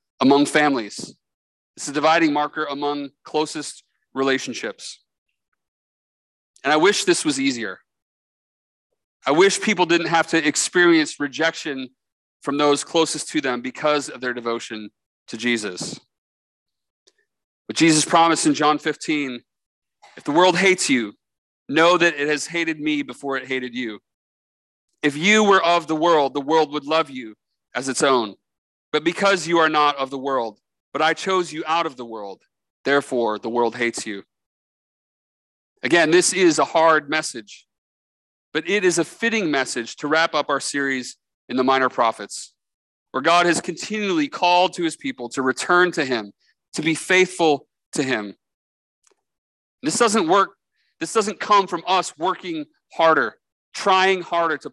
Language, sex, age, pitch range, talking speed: English, male, 30-49, 135-180 Hz, 155 wpm